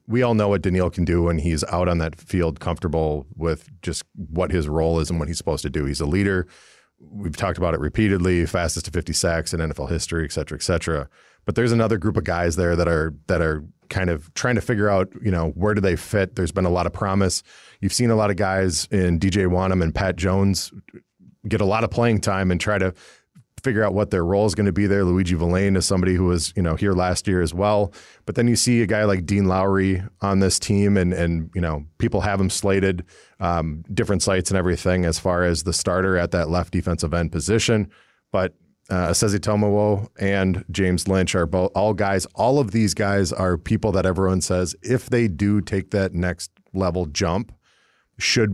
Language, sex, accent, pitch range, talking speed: English, male, American, 85-100 Hz, 225 wpm